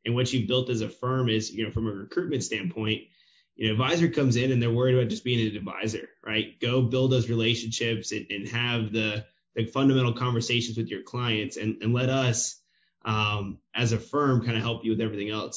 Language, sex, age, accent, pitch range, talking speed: English, male, 20-39, American, 110-130 Hz, 220 wpm